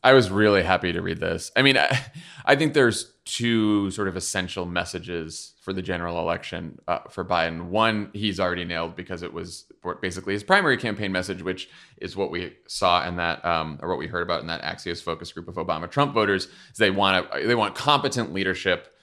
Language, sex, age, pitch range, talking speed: English, male, 20-39, 90-110 Hz, 205 wpm